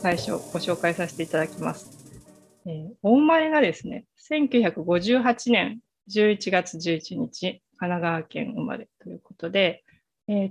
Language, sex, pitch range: Japanese, female, 170-225 Hz